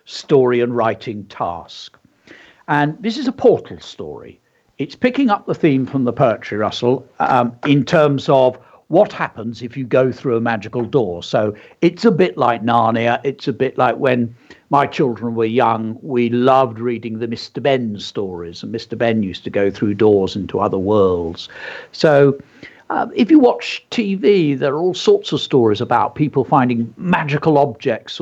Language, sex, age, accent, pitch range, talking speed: English, male, 60-79, British, 115-150 Hz, 175 wpm